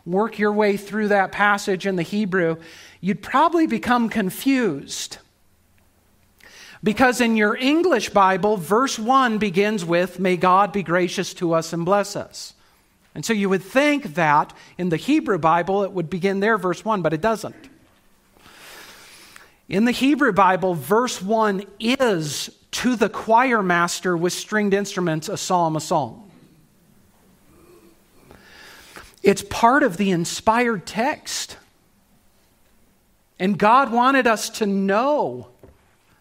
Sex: male